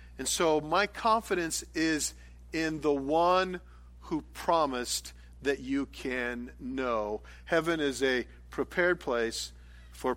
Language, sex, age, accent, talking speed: English, male, 50-69, American, 120 wpm